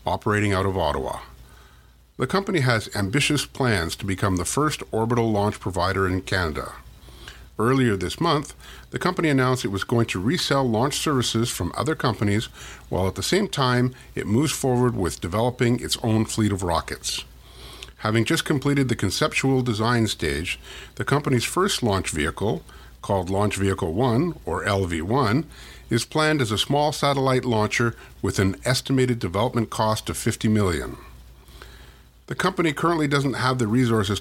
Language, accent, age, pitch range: English, American, 50-69, 95-130 Hz